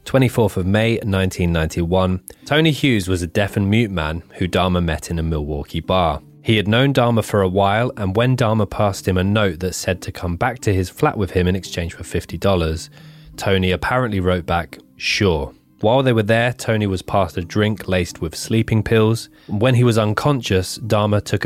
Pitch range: 85-110 Hz